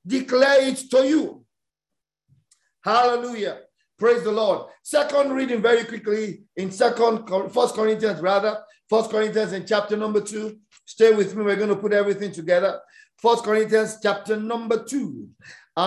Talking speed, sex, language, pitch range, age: 140 wpm, male, English, 215-265 Hz, 50-69